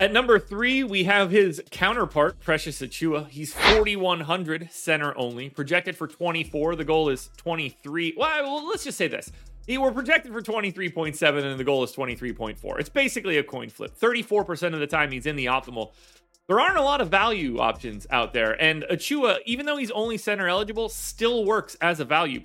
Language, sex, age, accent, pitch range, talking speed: English, male, 30-49, American, 140-205 Hz, 185 wpm